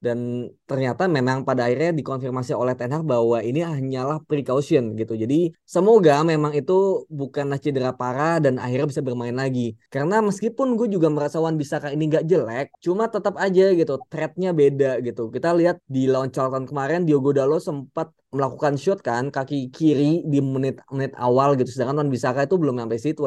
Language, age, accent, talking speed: Indonesian, 20-39, native, 175 wpm